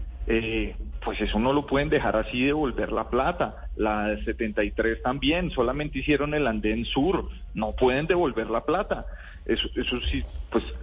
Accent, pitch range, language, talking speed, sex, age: Colombian, 115-170 Hz, Spanish, 155 wpm, male, 40-59